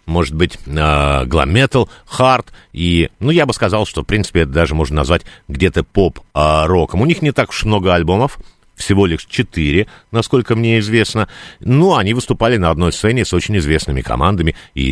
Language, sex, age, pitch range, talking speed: Russian, male, 50-69, 85-120 Hz, 170 wpm